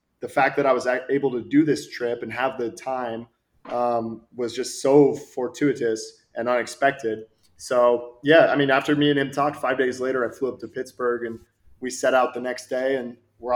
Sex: male